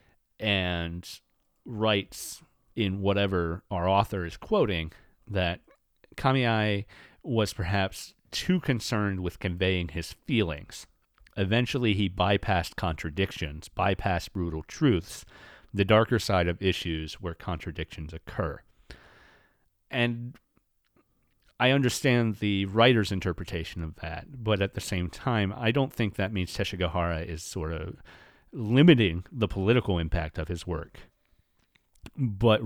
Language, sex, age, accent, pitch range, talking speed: English, male, 40-59, American, 85-105 Hz, 115 wpm